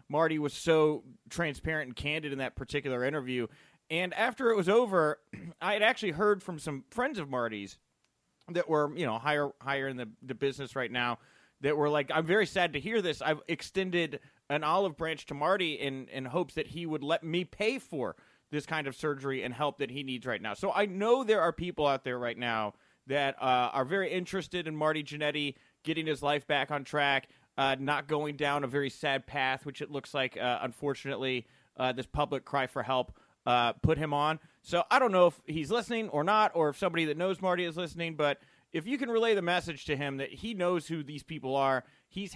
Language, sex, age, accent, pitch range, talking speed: English, male, 30-49, American, 135-170 Hz, 220 wpm